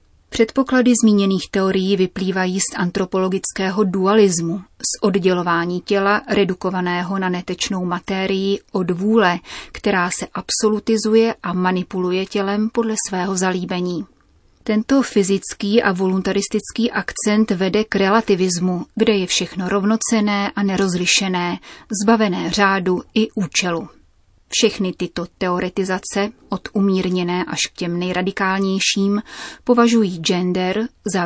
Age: 30-49